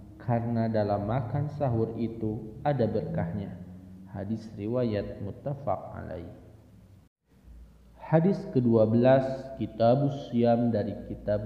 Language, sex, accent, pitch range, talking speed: Indonesian, male, native, 105-135 Hz, 80 wpm